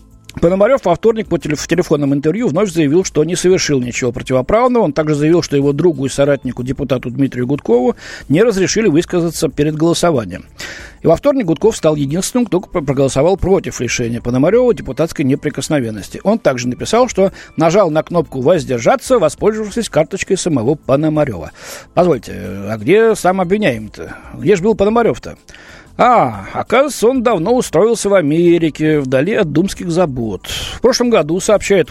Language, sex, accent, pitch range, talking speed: Russian, male, native, 135-210 Hz, 145 wpm